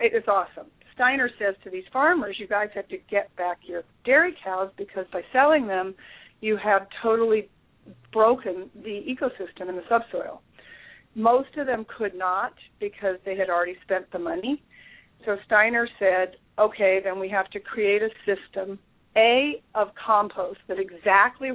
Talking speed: 160 wpm